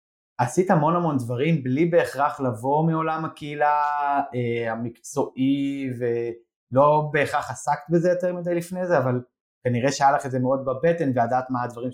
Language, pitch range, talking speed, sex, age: Hebrew, 115-155 Hz, 155 wpm, male, 20-39